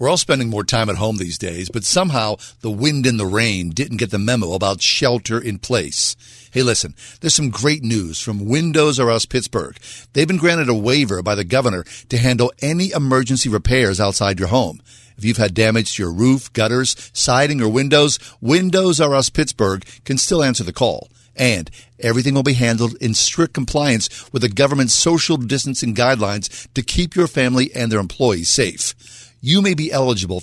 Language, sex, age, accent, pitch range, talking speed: English, male, 50-69, American, 110-140 Hz, 190 wpm